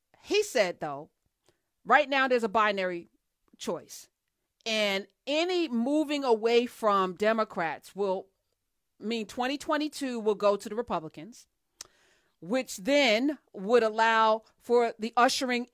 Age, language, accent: 40-59, English, American